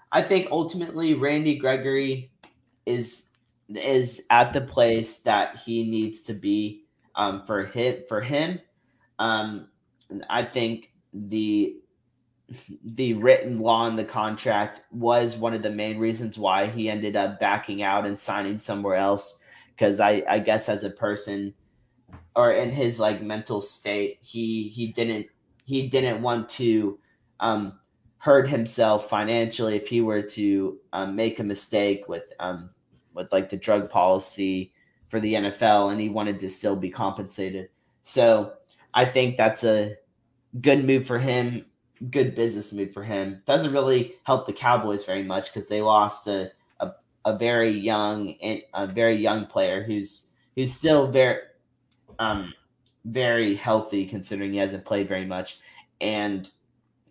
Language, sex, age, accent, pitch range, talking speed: English, male, 20-39, American, 100-125 Hz, 150 wpm